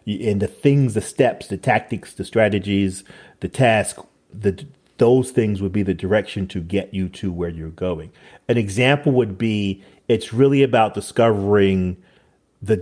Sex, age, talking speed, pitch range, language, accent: male, 40-59, 160 wpm, 95-120 Hz, English, American